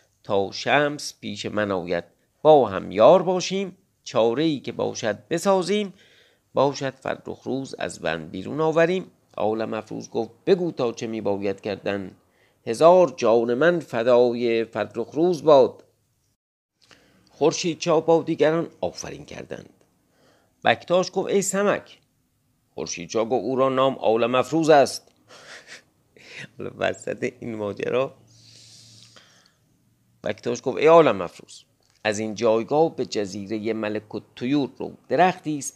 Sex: male